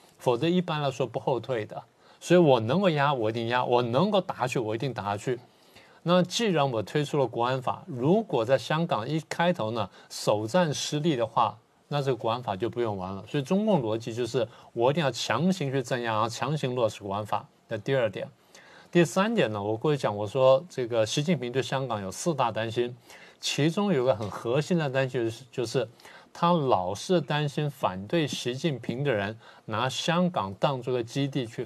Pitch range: 115-160 Hz